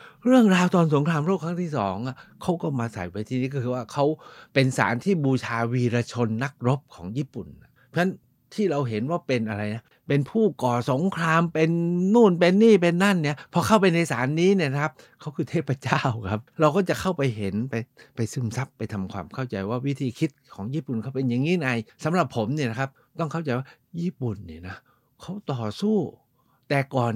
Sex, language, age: male, Thai, 60-79